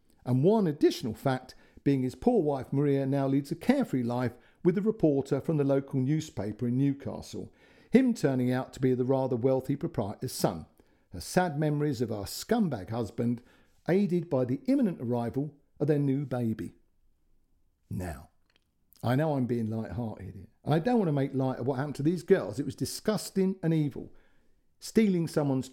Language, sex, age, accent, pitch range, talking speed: English, male, 50-69, British, 115-160 Hz, 175 wpm